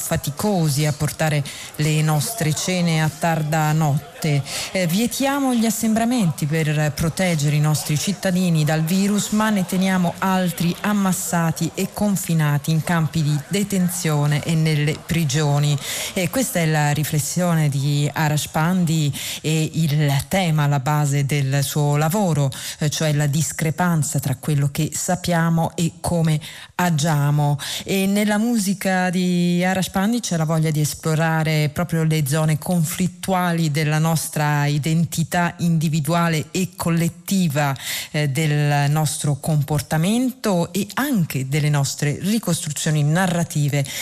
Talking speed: 125 wpm